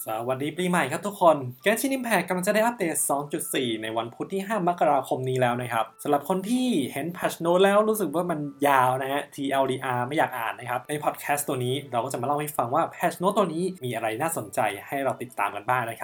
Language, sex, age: Thai, male, 20-39